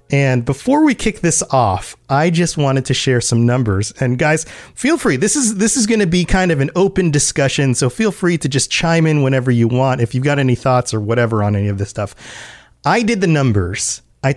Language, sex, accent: English, male, American